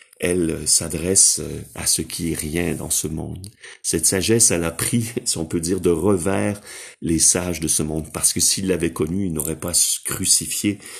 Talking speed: 190 wpm